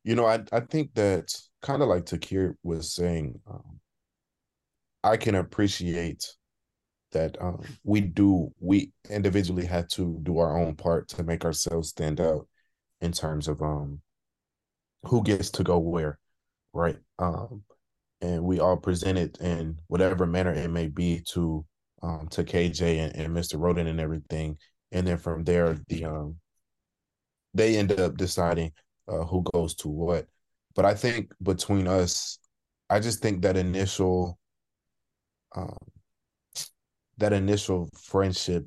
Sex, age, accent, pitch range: male, 20-39, American, 85-100 Hz